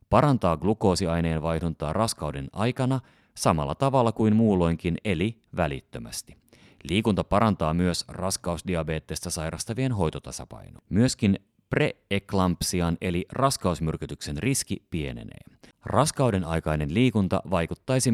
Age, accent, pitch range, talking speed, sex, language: 30-49, native, 80-110 Hz, 90 wpm, male, Finnish